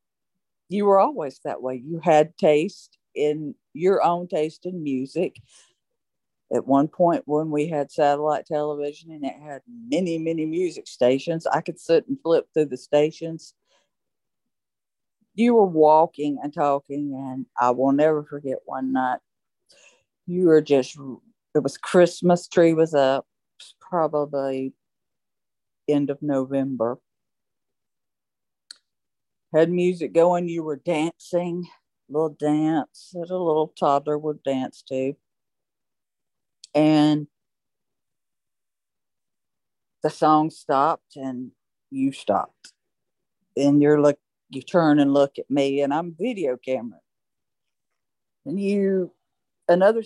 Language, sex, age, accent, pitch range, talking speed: English, female, 50-69, American, 140-175 Hz, 120 wpm